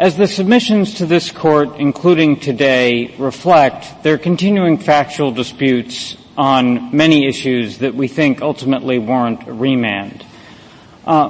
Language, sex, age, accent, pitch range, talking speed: English, male, 50-69, American, 130-160 Hz, 135 wpm